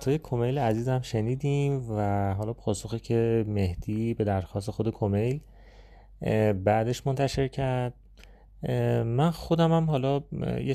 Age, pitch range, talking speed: 30-49, 105-130 Hz, 115 wpm